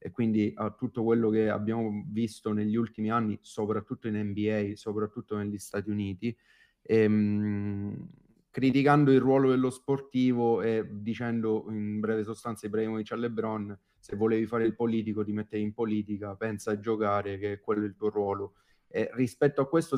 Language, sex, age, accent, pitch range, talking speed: Italian, male, 30-49, native, 105-115 Hz, 160 wpm